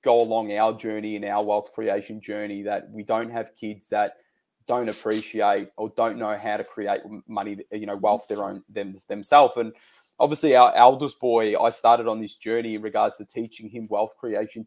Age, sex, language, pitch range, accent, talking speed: 20-39, male, English, 105-135 Hz, Australian, 195 wpm